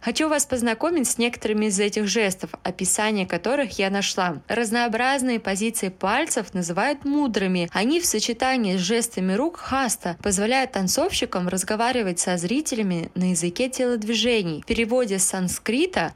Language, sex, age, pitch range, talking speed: Russian, female, 20-39, 200-260 Hz, 135 wpm